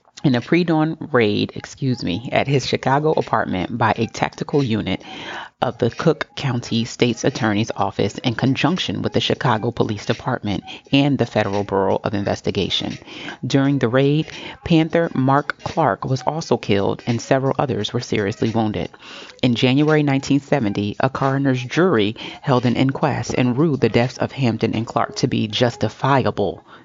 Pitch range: 110-140 Hz